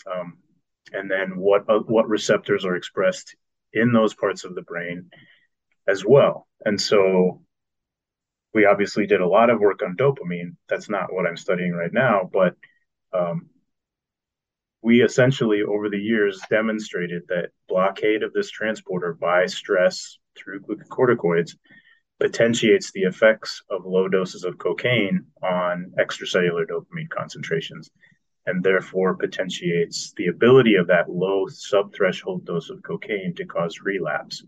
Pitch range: 95-150 Hz